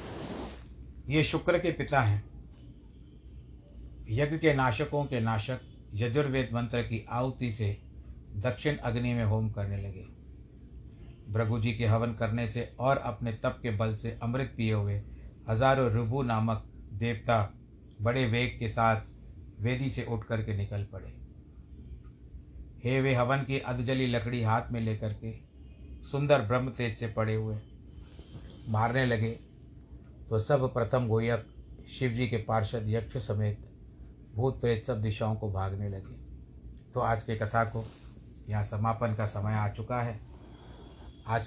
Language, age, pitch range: Hindi, 60-79, 100-120 Hz